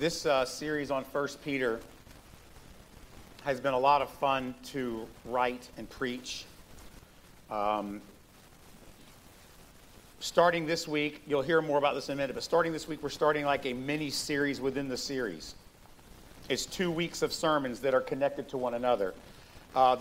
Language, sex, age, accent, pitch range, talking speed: English, male, 40-59, American, 125-150 Hz, 155 wpm